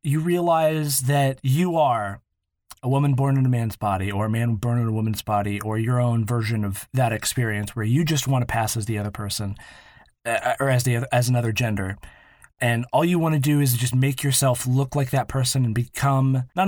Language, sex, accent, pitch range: English, male, American, 115-140 Hz